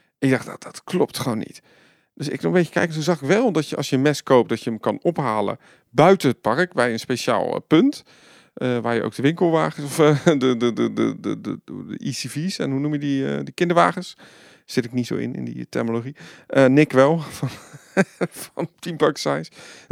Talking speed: 225 wpm